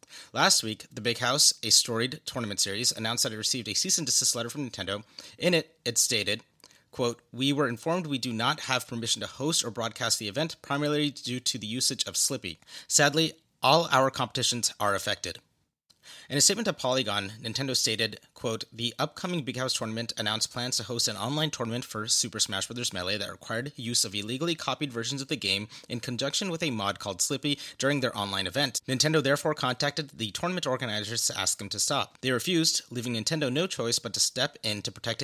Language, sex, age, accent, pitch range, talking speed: English, male, 30-49, American, 110-140 Hz, 200 wpm